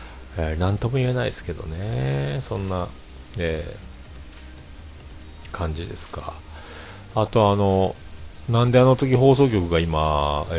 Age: 40-59